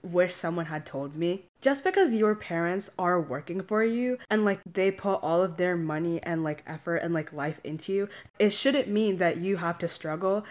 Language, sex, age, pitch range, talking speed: English, female, 10-29, 170-215 Hz, 210 wpm